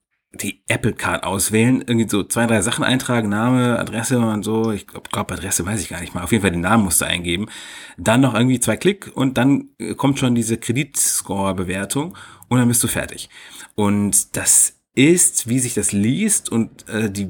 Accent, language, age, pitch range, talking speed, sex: German, German, 40-59, 95-120 Hz, 190 wpm, male